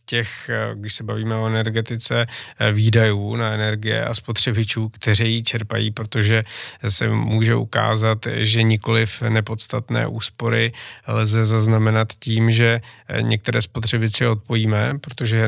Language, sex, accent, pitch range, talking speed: Czech, male, native, 110-120 Hz, 120 wpm